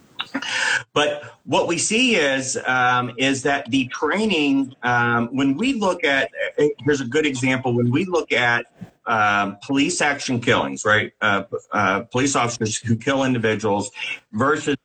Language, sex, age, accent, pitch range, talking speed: English, male, 40-59, American, 110-140 Hz, 145 wpm